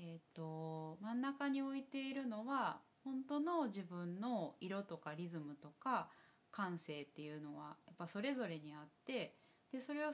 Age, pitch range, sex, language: 20-39, 160-235 Hz, female, Japanese